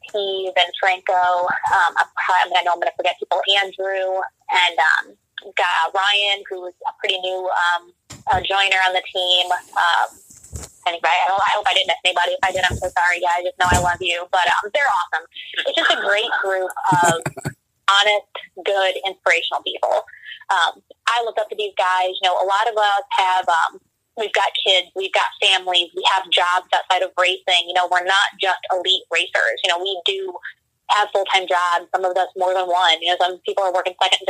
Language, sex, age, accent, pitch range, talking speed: English, female, 20-39, American, 175-195 Hz, 205 wpm